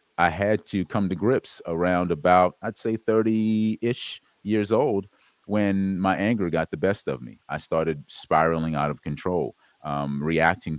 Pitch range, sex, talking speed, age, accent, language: 75-100 Hz, male, 160 wpm, 30-49, American, English